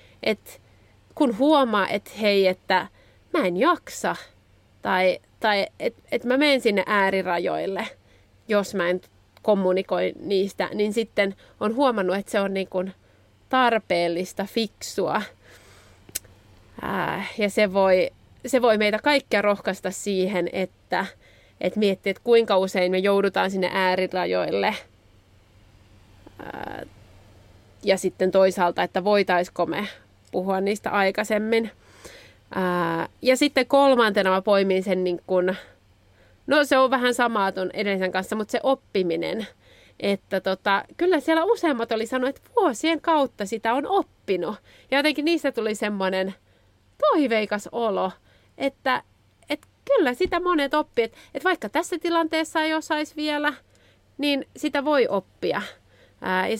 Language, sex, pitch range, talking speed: Finnish, female, 185-265 Hz, 130 wpm